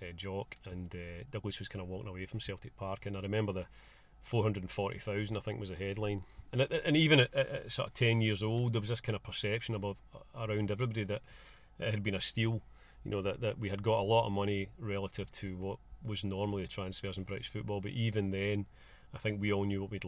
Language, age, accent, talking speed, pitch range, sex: English, 40-59, British, 245 wpm, 100-115 Hz, male